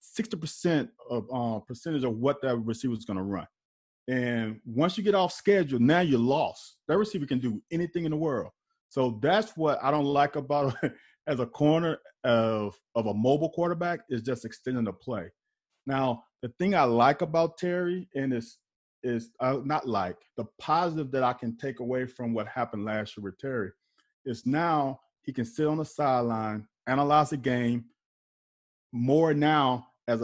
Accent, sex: American, male